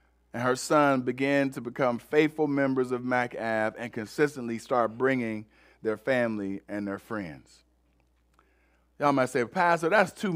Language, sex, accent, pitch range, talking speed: English, male, American, 130-185 Hz, 145 wpm